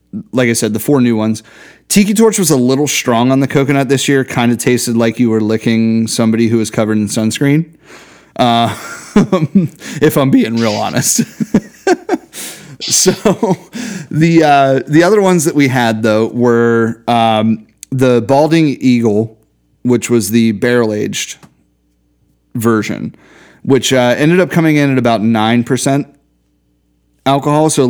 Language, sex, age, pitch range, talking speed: English, male, 30-49, 110-145 Hz, 150 wpm